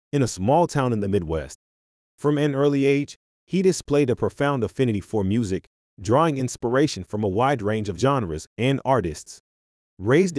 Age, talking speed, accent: 30-49, 170 wpm, American